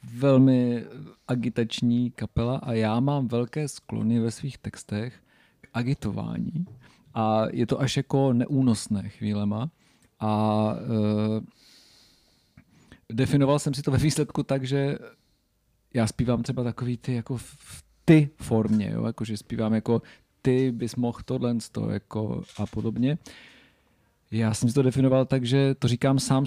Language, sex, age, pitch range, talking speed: Czech, male, 40-59, 115-135 Hz, 140 wpm